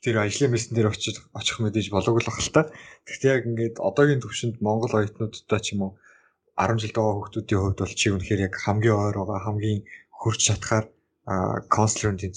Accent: Korean